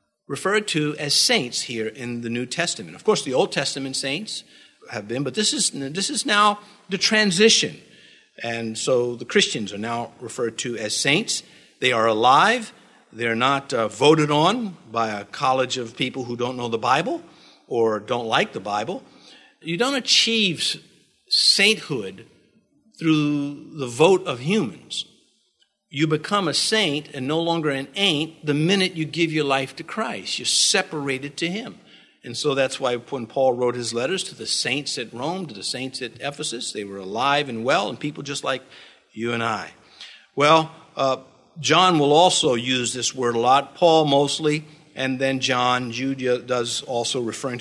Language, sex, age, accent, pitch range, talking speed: English, male, 50-69, American, 125-180 Hz, 175 wpm